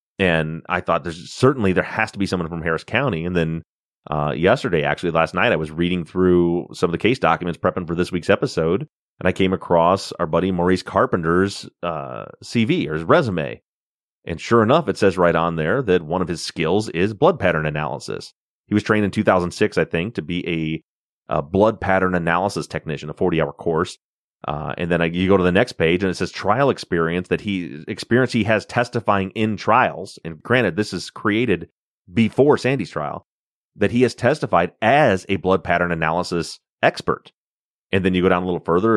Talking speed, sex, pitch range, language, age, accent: 200 wpm, male, 85-95 Hz, English, 30-49, American